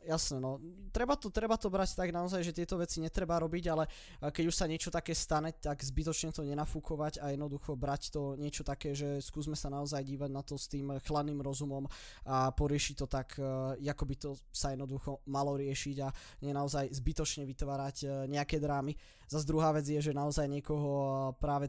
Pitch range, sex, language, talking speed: 140-155 Hz, male, Slovak, 185 wpm